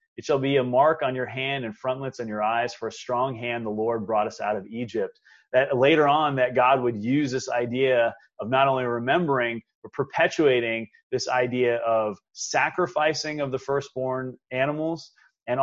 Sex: male